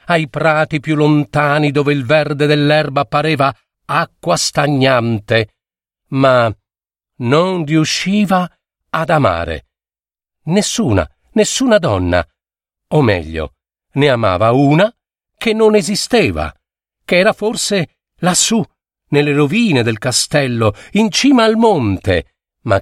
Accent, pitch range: native, 110-155 Hz